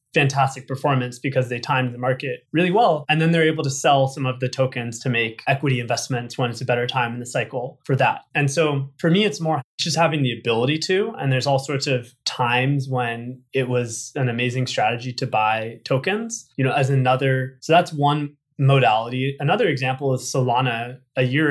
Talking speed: 205 wpm